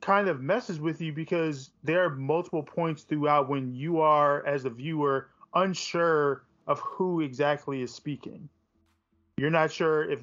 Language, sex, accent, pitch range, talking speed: English, male, American, 130-160 Hz, 160 wpm